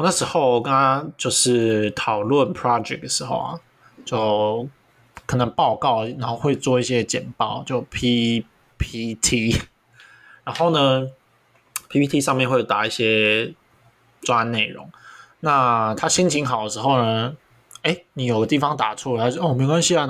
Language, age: Chinese, 20-39